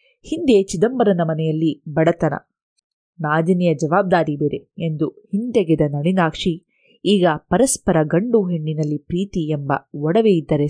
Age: 20-39